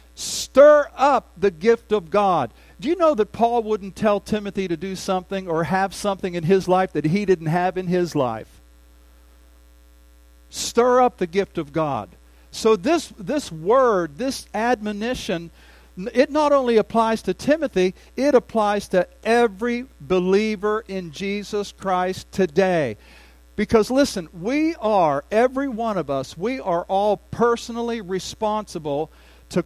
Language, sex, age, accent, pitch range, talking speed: English, male, 50-69, American, 150-225 Hz, 145 wpm